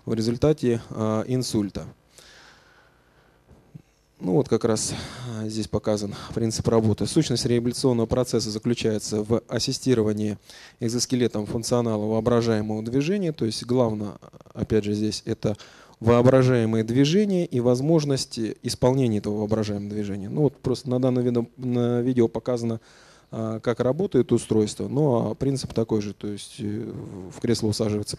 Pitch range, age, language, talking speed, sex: 110-125 Hz, 20-39, Russian, 115 wpm, male